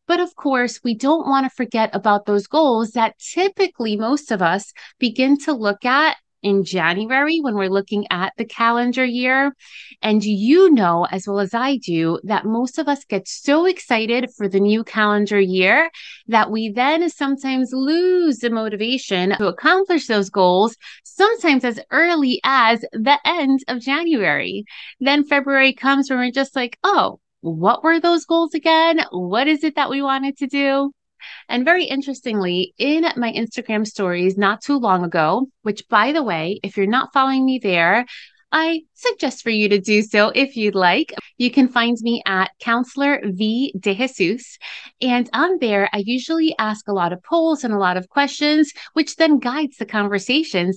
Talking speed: 175 wpm